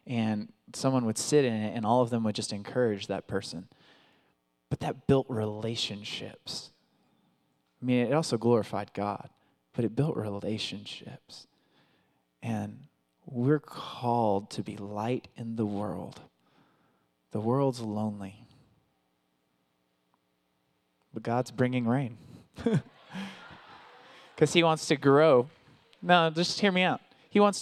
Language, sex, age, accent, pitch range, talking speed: English, male, 20-39, American, 105-145 Hz, 125 wpm